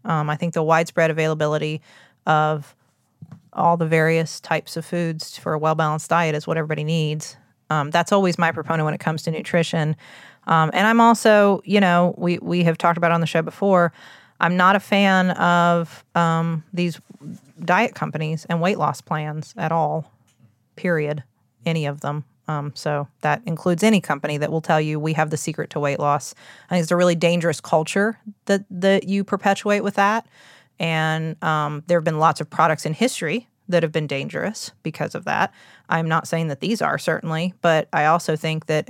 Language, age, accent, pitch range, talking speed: English, 30-49, American, 155-185 Hz, 190 wpm